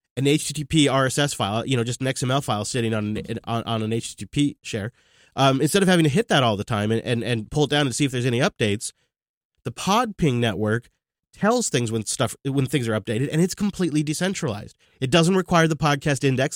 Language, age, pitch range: English, 30-49, 115-145 Hz